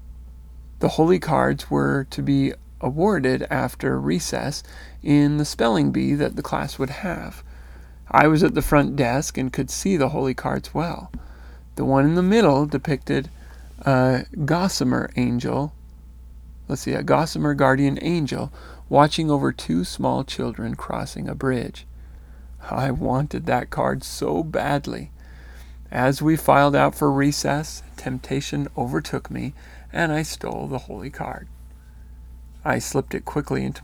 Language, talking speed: English, 140 wpm